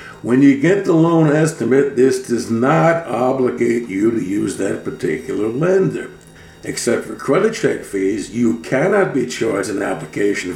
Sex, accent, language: male, American, English